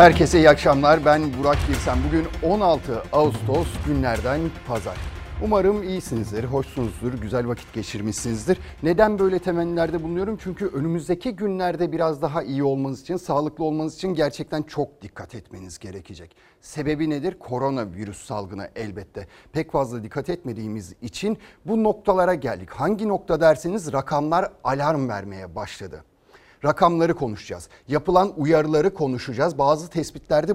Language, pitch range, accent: Turkish, 130-185 Hz, native